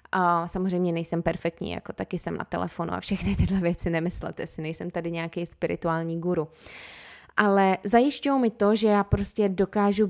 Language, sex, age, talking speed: Czech, female, 20-39, 165 wpm